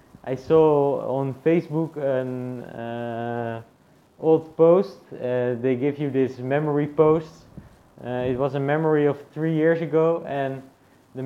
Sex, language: male, English